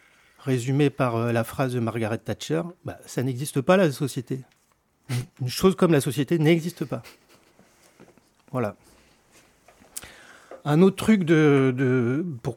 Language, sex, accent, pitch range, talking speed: French, male, French, 120-160 Hz, 140 wpm